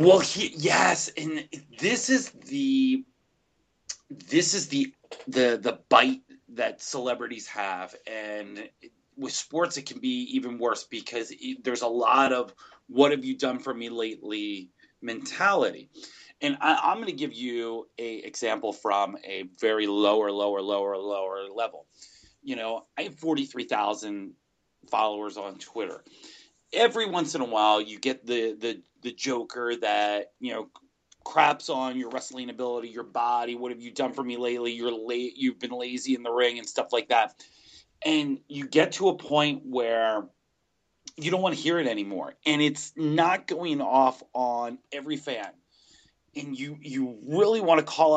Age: 30-49